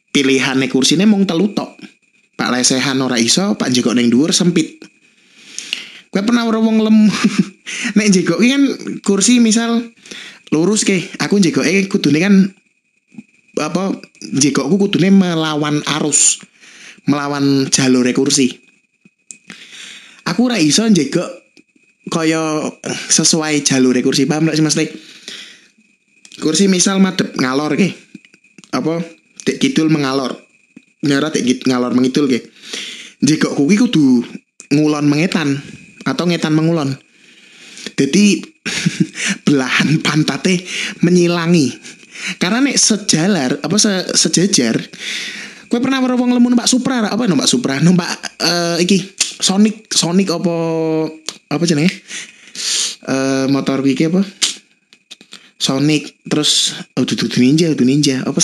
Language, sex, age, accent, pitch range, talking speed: Indonesian, male, 20-39, native, 150-215 Hz, 115 wpm